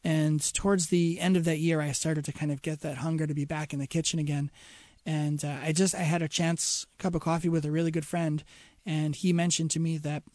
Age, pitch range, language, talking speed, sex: 30-49, 150-170 Hz, English, 260 wpm, male